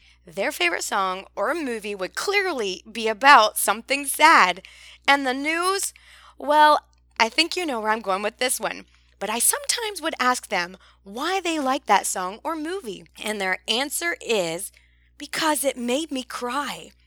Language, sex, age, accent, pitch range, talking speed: English, female, 20-39, American, 195-285 Hz, 165 wpm